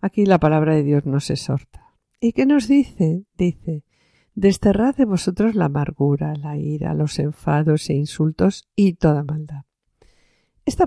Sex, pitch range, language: female, 155-205 Hz, Spanish